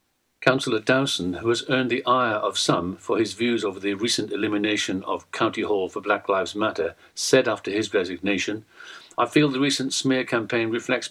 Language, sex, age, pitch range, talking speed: English, male, 60-79, 110-145 Hz, 185 wpm